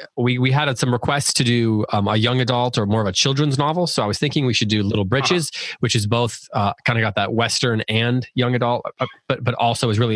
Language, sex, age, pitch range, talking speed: English, male, 20-39, 105-125 Hz, 255 wpm